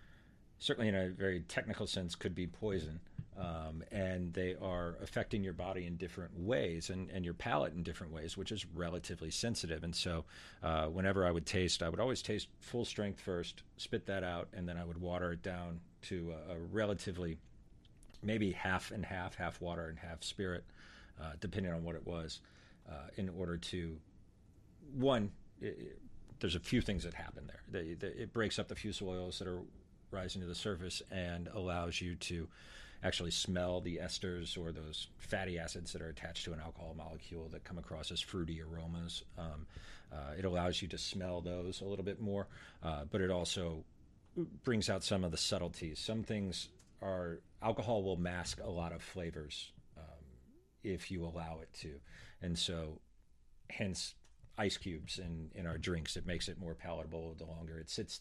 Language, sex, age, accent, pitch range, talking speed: English, male, 40-59, American, 85-95 Hz, 185 wpm